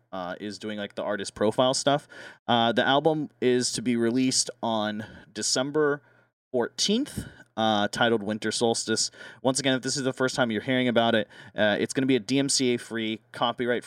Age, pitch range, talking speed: 30-49, 110-135 Hz, 185 wpm